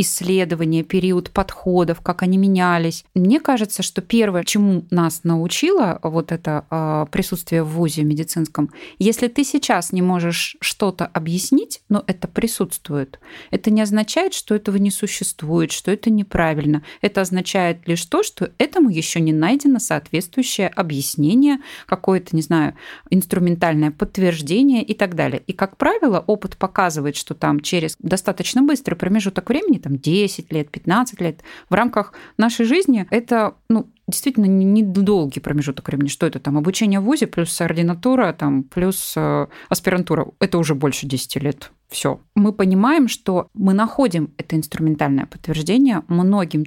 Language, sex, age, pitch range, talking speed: Russian, female, 20-39, 165-220 Hz, 140 wpm